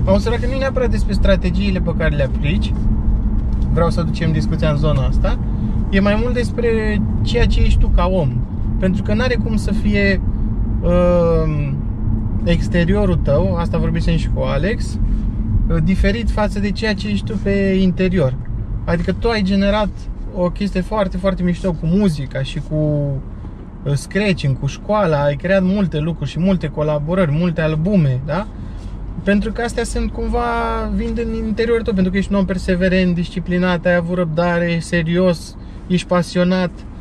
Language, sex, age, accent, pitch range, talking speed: Romanian, male, 20-39, native, 140-200 Hz, 160 wpm